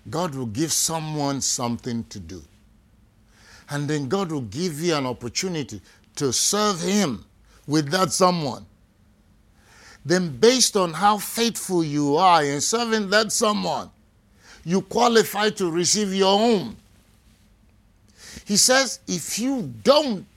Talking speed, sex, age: 125 wpm, male, 50-69